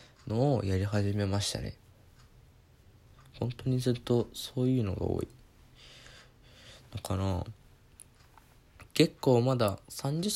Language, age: Japanese, 20-39